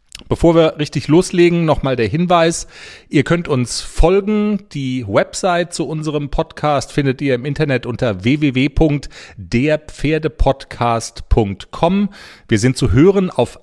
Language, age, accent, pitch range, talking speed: German, 40-59, German, 120-165 Hz, 120 wpm